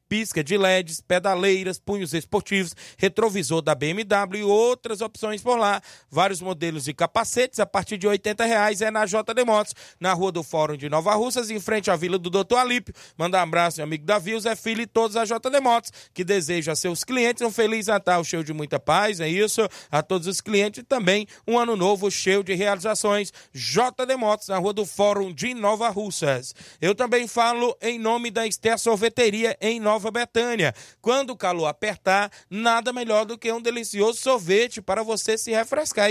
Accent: Brazilian